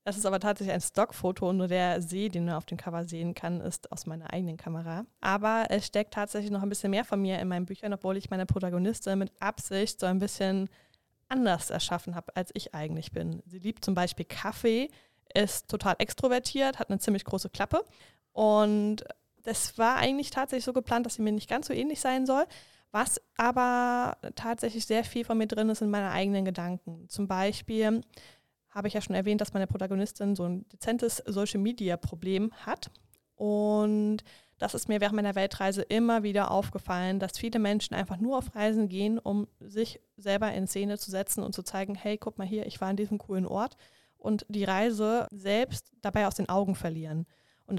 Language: German